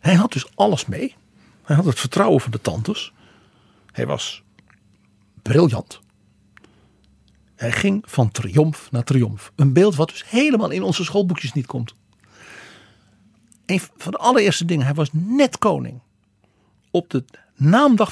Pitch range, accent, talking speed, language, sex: 120-175 Hz, Dutch, 140 wpm, Dutch, male